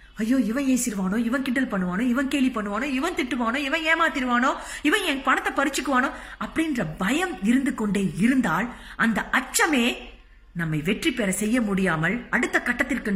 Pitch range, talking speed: 195-285 Hz, 70 wpm